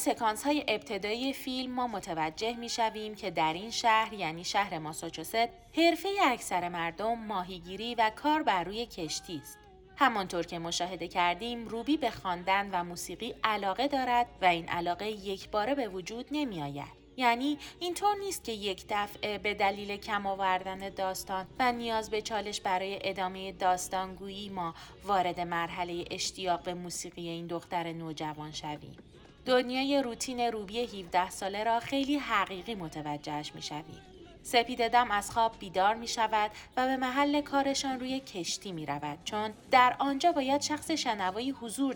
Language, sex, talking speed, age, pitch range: Persian, female, 145 wpm, 30-49, 175-235 Hz